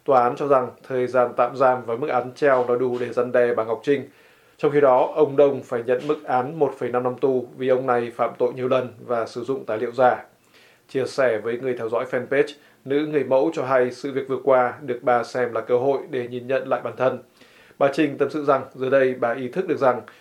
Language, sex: Vietnamese, male